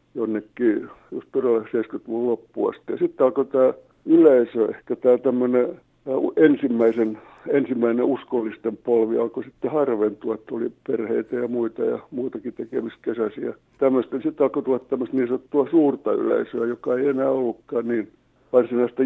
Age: 60-79